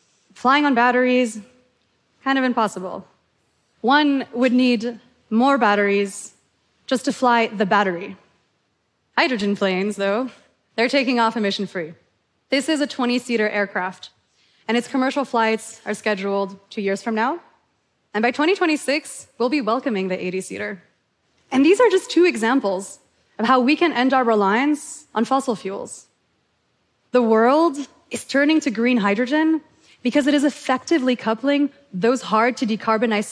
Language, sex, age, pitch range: Korean, female, 20-39, 215-275 Hz